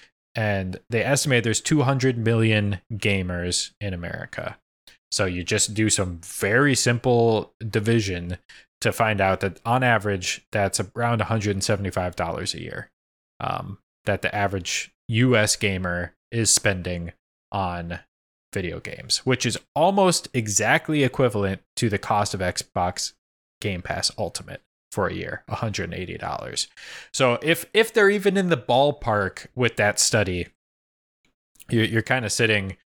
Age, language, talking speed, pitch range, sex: 20-39, English, 135 wpm, 95-125 Hz, male